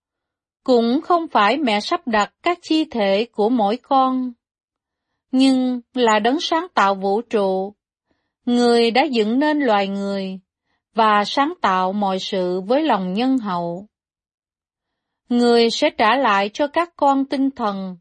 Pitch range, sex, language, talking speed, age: 200-265 Hz, female, Vietnamese, 145 wpm, 30-49